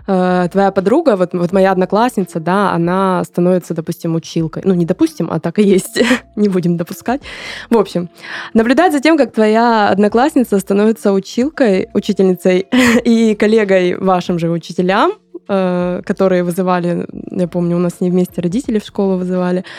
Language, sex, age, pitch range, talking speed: Russian, female, 20-39, 180-205 Hz, 150 wpm